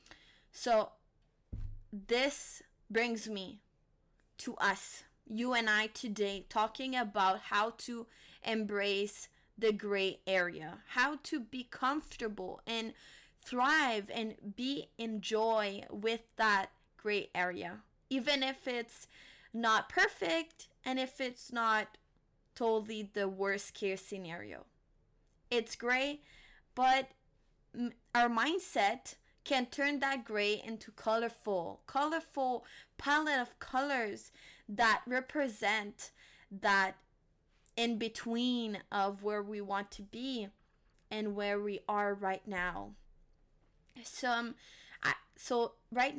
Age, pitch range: 20-39, 205-255 Hz